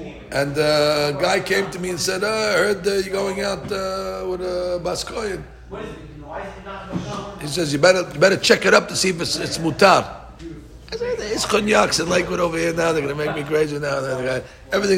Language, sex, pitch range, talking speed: English, male, 160-210 Hz, 220 wpm